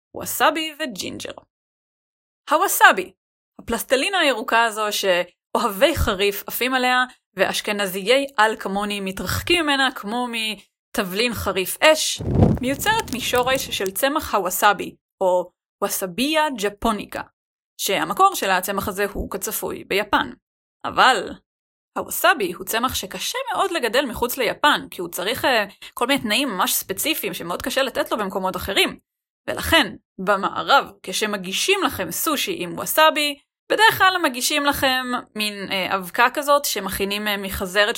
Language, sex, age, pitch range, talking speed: Hebrew, female, 20-39, 200-290 Hz, 120 wpm